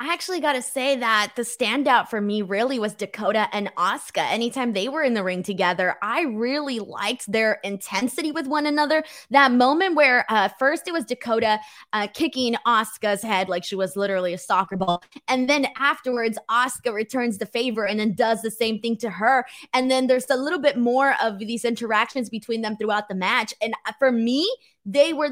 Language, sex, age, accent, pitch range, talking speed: English, female, 20-39, American, 195-260 Hz, 200 wpm